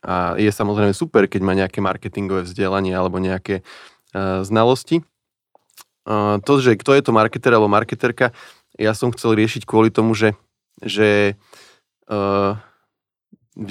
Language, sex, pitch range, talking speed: Slovak, male, 100-120 Hz, 135 wpm